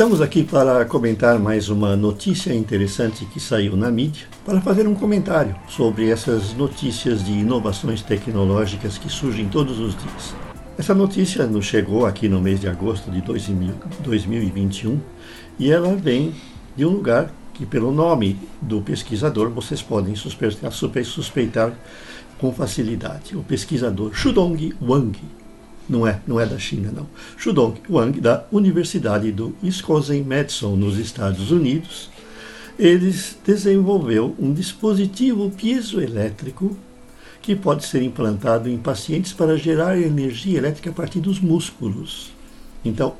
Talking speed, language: 130 wpm, Portuguese